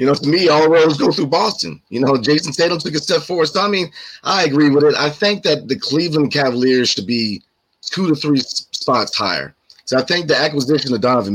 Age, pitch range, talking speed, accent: 30-49, 130-155 Hz, 235 wpm, American